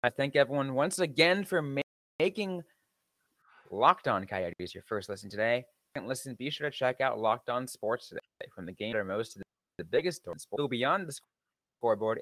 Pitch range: 100-150 Hz